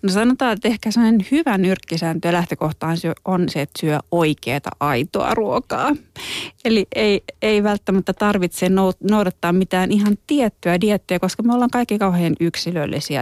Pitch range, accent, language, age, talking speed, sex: 155-200 Hz, native, Finnish, 30-49, 140 wpm, female